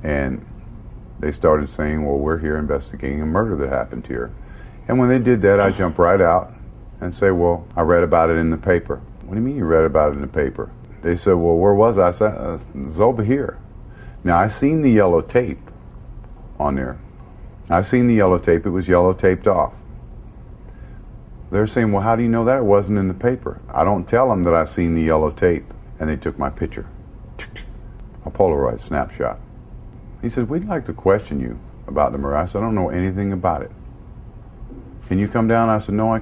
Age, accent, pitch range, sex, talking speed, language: 50-69, American, 80-105 Hz, male, 215 wpm, English